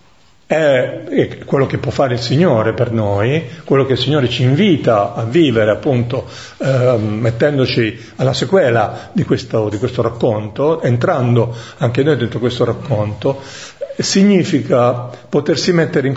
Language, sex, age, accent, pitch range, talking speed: Italian, male, 50-69, native, 115-150 Hz, 135 wpm